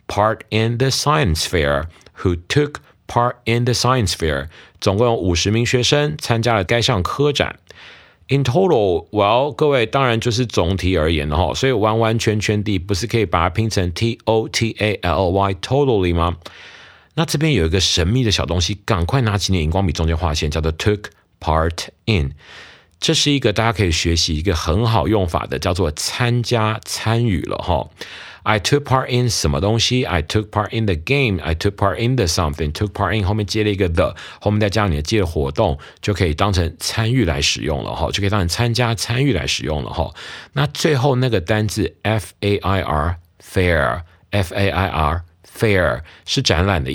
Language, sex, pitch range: Chinese, male, 85-120 Hz